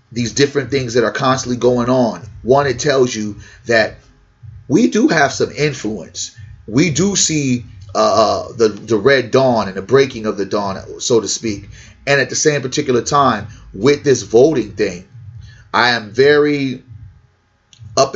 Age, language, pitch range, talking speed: 30-49, English, 110-135 Hz, 160 wpm